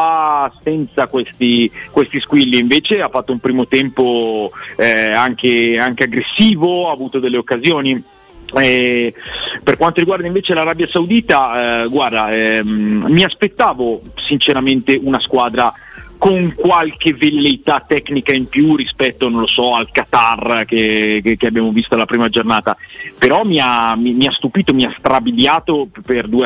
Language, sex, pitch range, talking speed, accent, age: Italian, male, 120-165 Hz, 140 wpm, native, 40-59